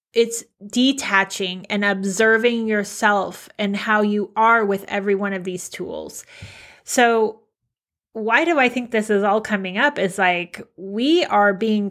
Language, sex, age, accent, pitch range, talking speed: English, female, 30-49, American, 200-235 Hz, 150 wpm